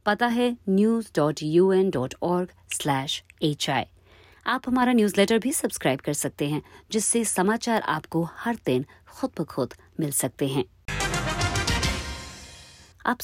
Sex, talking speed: female, 105 wpm